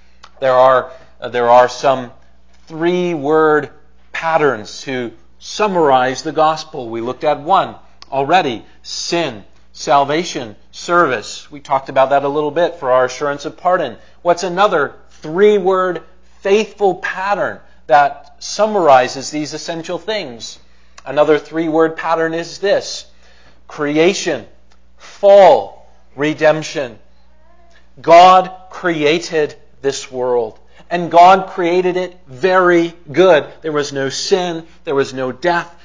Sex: male